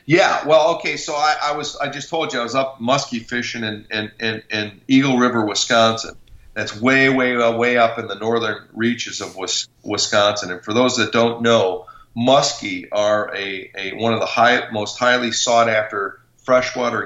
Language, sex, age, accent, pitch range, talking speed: English, male, 40-59, American, 110-125 Hz, 185 wpm